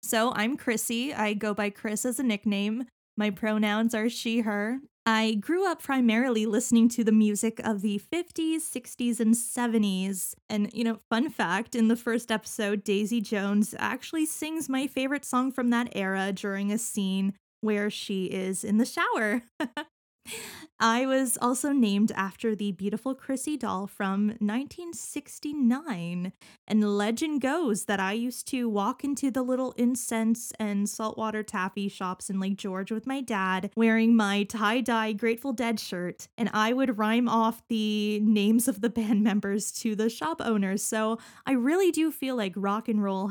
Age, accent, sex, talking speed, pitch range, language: 20-39, American, female, 165 wpm, 205-250 Hz, English